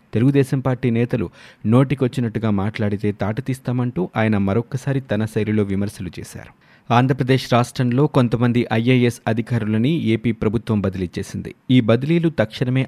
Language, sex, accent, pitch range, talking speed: Telugu, male, native, 100-125 Hz, 115 wpm